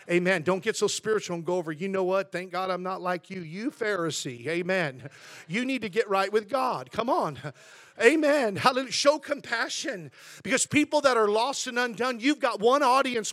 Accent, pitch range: American, 245-350 Hz